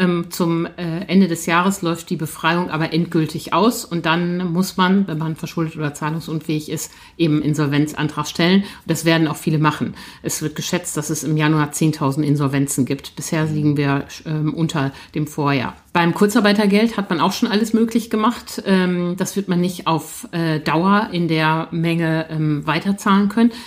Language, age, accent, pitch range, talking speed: German, 50-69, German, 160-185 Hz, 160 wpm